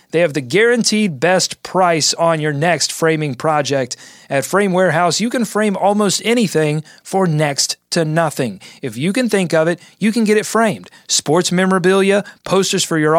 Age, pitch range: 30-49, 150-195 Hz